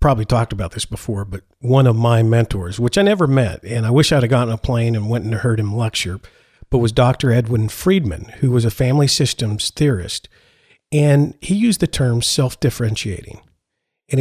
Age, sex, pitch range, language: 50-69, male, 115-140 Hz, English